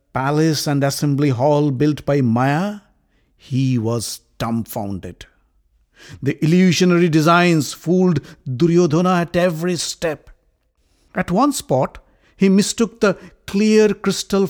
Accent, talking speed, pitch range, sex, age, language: Indian, 110 wpm, 125-175 Hz, male, 60-79, English